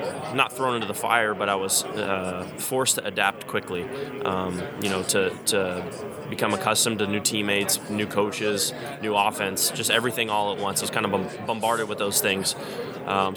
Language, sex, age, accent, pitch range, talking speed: English, male, 20-39, American, 100-110 Hz, 185 wpm